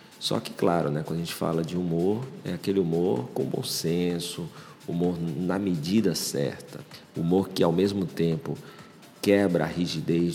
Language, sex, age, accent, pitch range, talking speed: Portuguese, male, 50-69, Brazilian, 80-95 Hz, 160 wpm